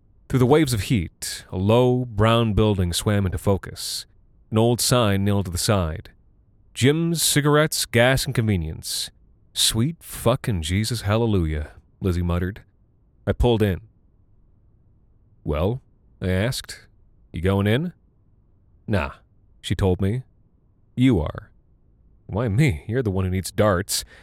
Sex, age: male, 30-49